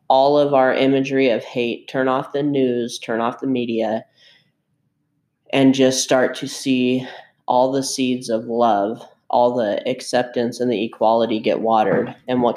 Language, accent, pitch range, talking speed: English, American, 115-130 Hz, 160 wpm